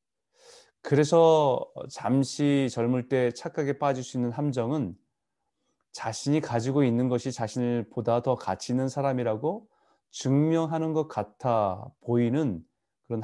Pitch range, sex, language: 110-145 Hz, male, Korean